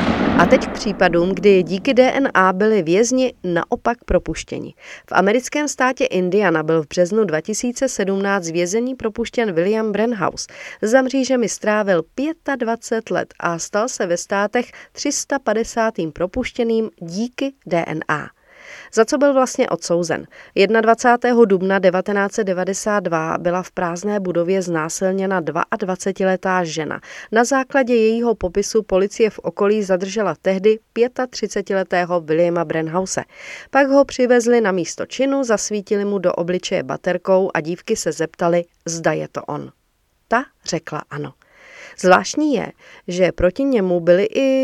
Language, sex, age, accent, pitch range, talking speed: Czech, female, 40-59, native, 175-235 Hz, 125 wpm